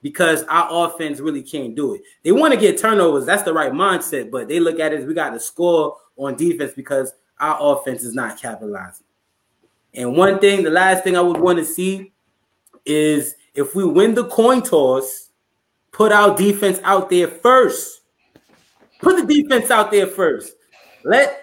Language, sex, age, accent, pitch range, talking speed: English, male, 20-39, American, 160-205 Hz, 180 wpm